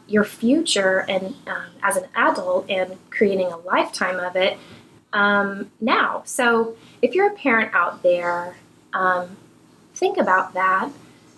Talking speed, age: 135 wpm, 20-39